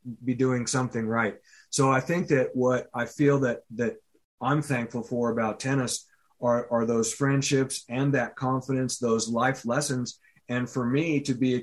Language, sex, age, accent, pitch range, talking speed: English, male, 30-49, American, 115-140 Hz, 175 wpm